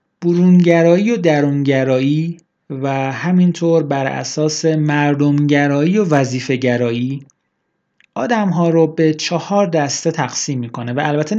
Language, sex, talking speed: Persian, male, 110 wpm